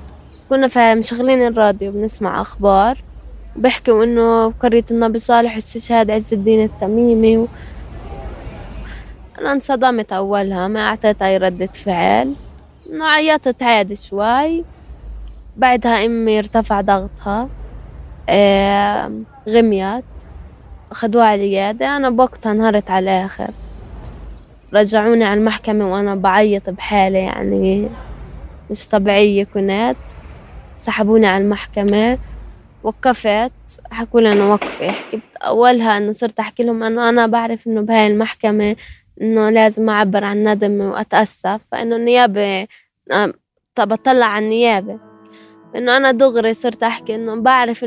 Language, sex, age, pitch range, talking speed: Arabic, female, 20-39, 200-230 Hz, 115 wpm